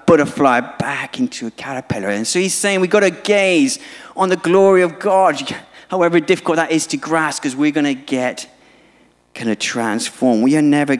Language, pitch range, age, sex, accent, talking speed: English, 105-180 Hz, 30-49, male, British, 190 wpm